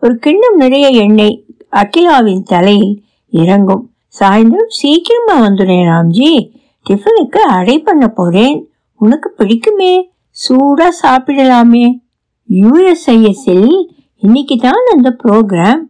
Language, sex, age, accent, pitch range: Tamil, female, 60-79, native, 200-270 Hz